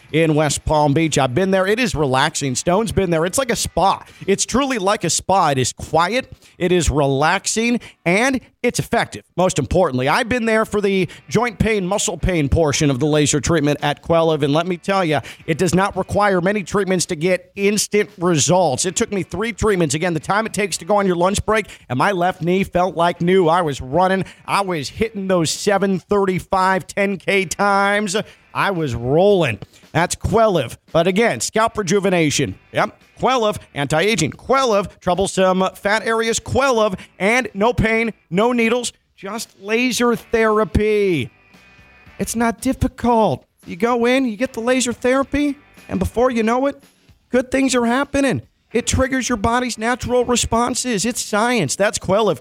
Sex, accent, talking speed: male, American, 175 wpm